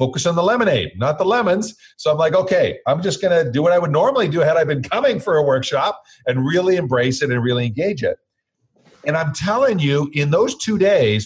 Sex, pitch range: male, 120-165 Hz